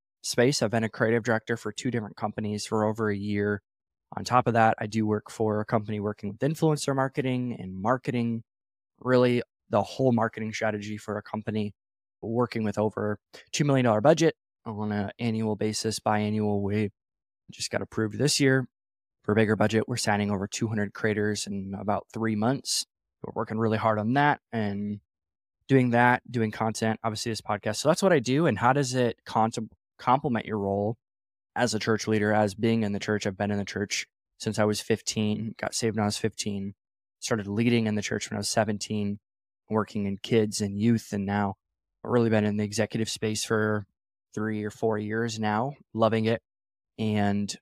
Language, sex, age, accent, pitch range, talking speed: English, male, 20-39, American, 105-115 Hz, 190 wpm